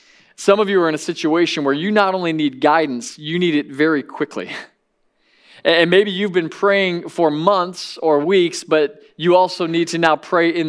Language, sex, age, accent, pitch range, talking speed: English, male, 20-39, American, 150-185 Hz, 195 wpm